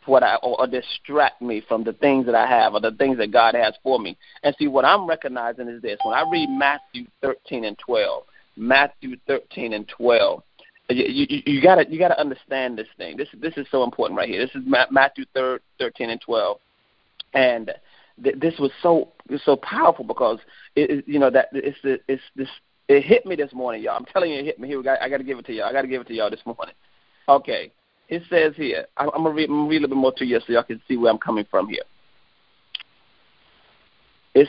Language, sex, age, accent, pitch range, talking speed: English, male, 30-49, American, 125-160 Hz, 220 wpm